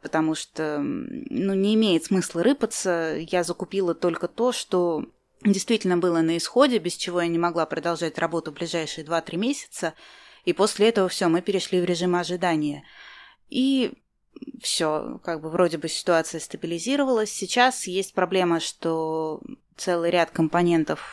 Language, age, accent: Russian, 20-39, native